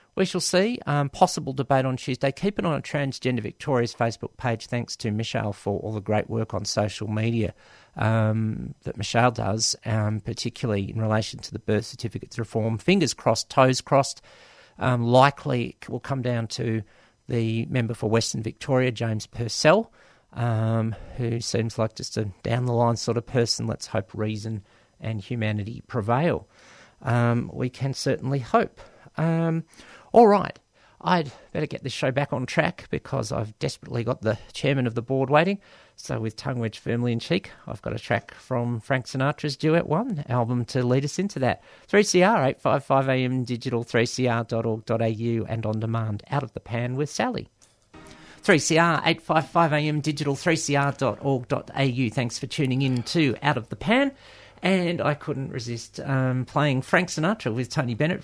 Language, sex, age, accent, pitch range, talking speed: English, male, 50-69, Australian, 115-145 Hz, 165 wpm